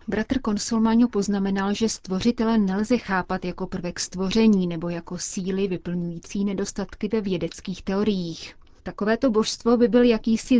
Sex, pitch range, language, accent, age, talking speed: female, 175-215 Hz, Czech, native, 30-49, 130 wpm